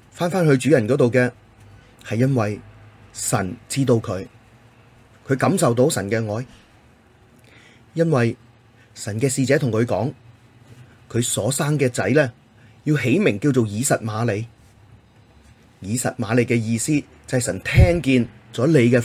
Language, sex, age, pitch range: Chinese, male, 30-49, 110-125 Hz